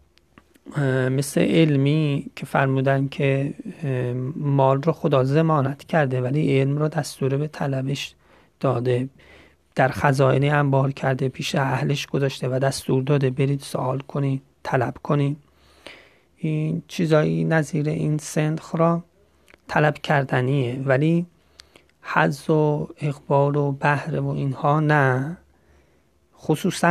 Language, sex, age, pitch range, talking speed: Persian, male, 30-49, 130-150 Hz, 110 wpm